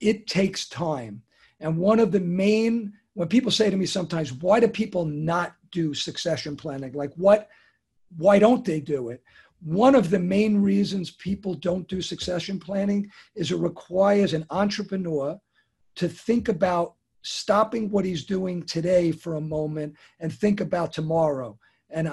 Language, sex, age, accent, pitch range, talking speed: English, male, 50-69, American, 165-200 Hz, 160 wpm